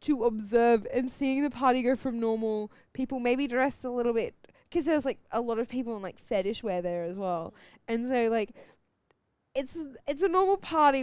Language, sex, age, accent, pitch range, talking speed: English, female, 10-29, Australian, 215-265 Hz, 200 wpm